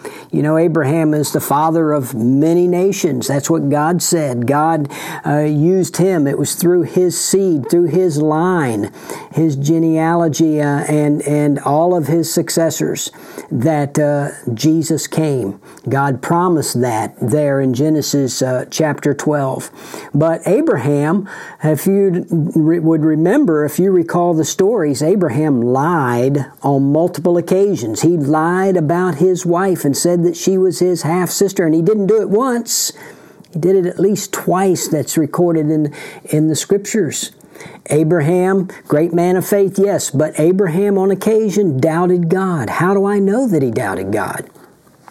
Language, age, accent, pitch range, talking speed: English, 50-69, American, 145-175 Hz, 150 wpm